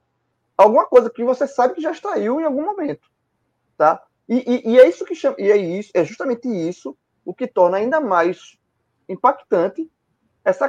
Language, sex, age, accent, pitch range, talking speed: Portuguese, male, 20-39, Brazilian, 180-280 Hz, 180 wpm